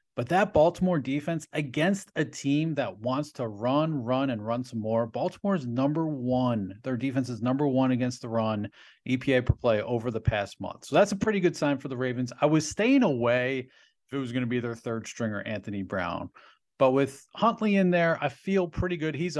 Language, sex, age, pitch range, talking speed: English, male, 40-59, 120-150 Hz, 210 wpm